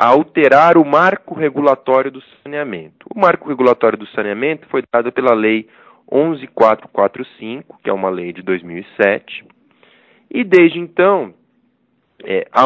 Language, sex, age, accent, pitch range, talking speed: Portuguese, male, 20-39, Brazilian, 120-175 Hz, 130 wpm